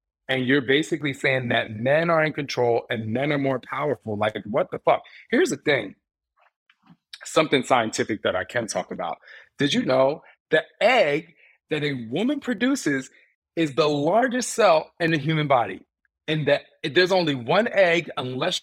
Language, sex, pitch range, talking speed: English, male, 130-160 Hz, 170 wpm